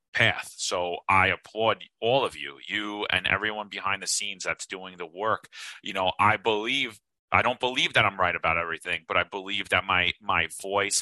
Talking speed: 195 wpm